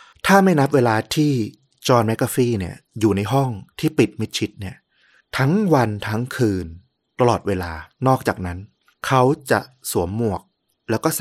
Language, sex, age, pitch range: Thai, male, 20-39, 100-130 Hz